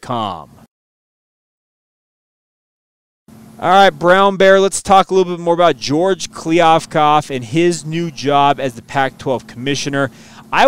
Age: 30-49